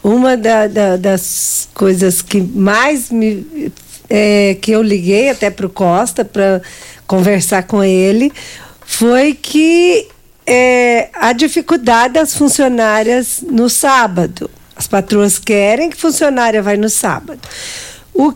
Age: 50-69